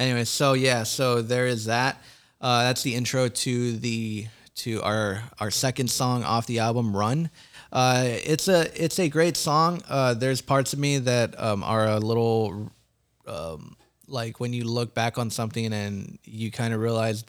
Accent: American